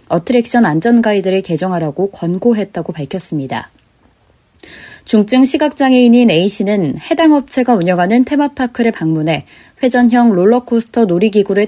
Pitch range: 185-240 Hz